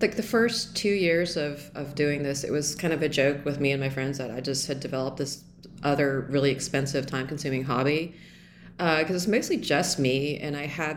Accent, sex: American, female